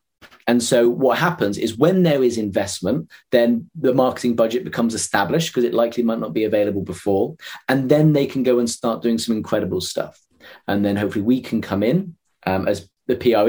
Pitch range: 115-150 Hz